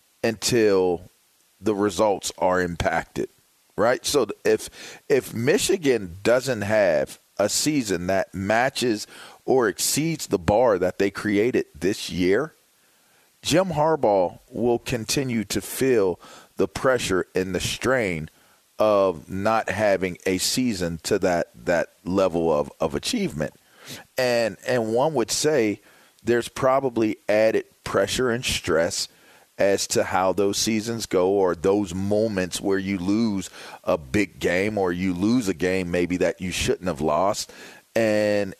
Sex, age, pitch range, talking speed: male, 40-59, 95-115 Hz, 135 wpm